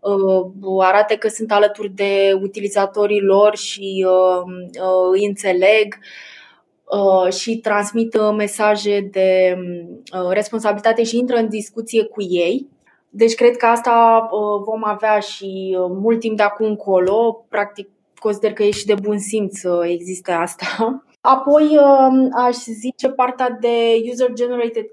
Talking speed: 120 wpm